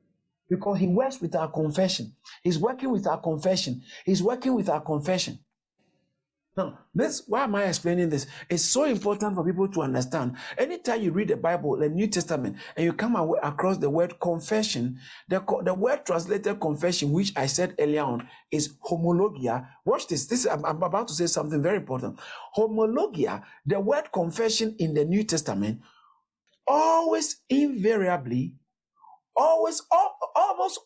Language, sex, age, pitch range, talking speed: English, male, 50-69, 155-225 Hz, 155 wpm